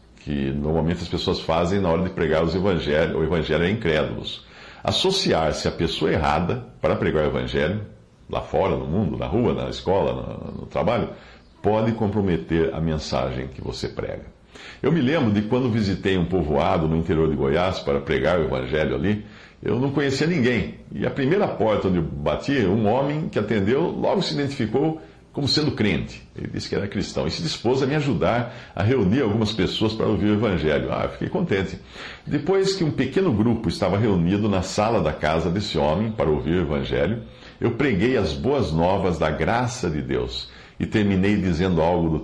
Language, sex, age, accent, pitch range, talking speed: Portuguese, male, 60-79, Brazilian, 80-110 Hz, 190 wpm